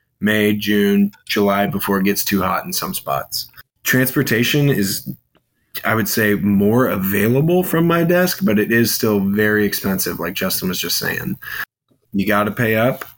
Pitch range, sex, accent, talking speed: 100-115 Hz, male, American, 170 wpm